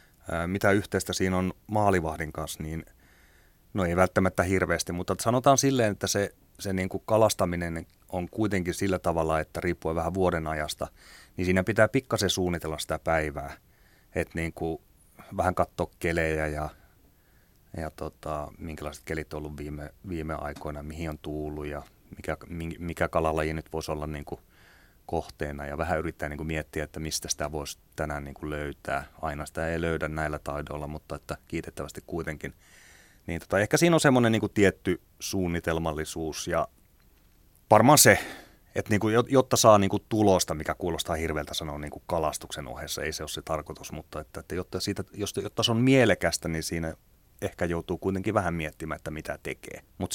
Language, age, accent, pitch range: Finnish, 30-49, native, 75-95 Hz